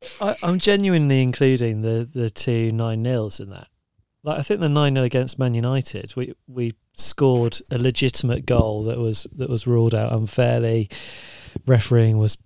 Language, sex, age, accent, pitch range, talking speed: English, male, 30-49, British, 110-140 Hz, 170 wpm